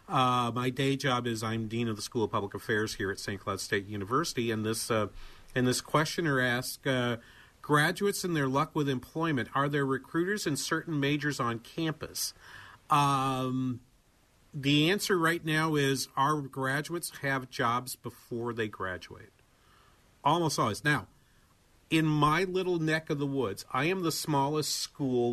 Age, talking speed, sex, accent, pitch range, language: 50-69, 165 wpm, male, American, 110-135 Hz, English